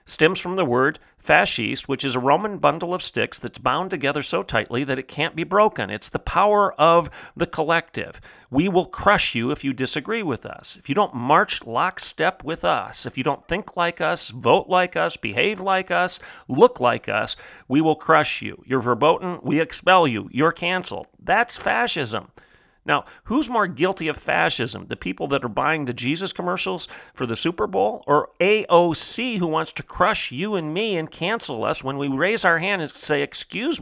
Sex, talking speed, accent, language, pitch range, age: male, 195 wpm, American, English, 145-185 Hz, 40-59